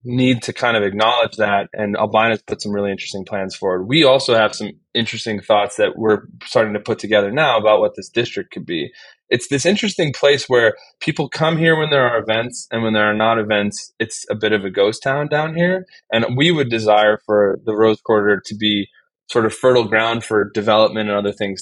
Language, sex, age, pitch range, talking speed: English, male, 20-39, 105-120 Hz, 220 wpm